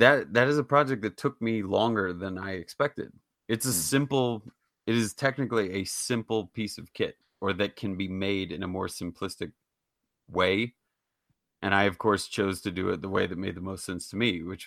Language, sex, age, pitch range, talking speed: English, male, 30-49, 90-110 Hz, 210 wpm